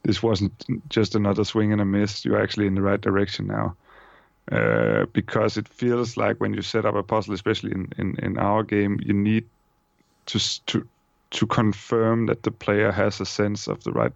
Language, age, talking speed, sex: English, 30-49, 200 wpm, male